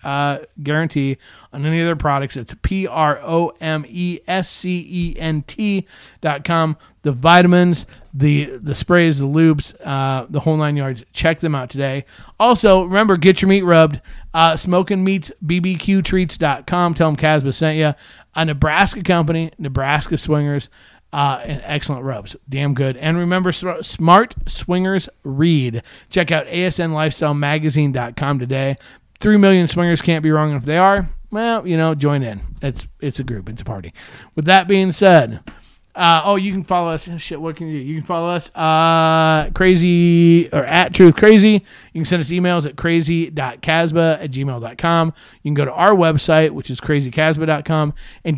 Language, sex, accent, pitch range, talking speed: English, male, American, 145-180 Hz, 175 wpm